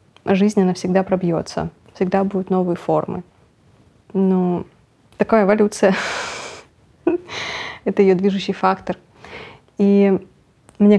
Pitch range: 180-200 Hz